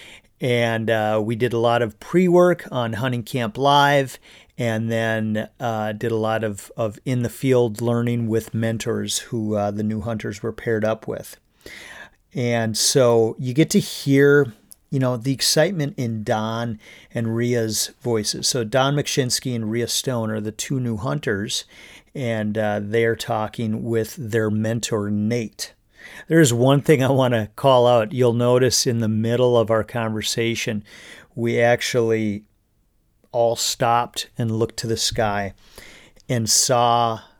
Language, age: English, 40-59